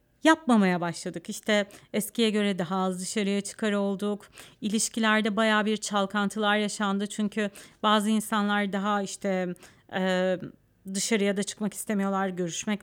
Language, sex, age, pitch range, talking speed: Turkish, female, 40-59, 195-220 Hz, 120 wpm